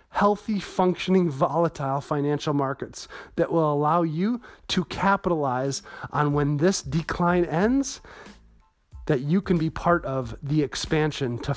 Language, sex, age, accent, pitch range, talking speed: English, male, 30-49, American, 140-170 Hz, 130 wpm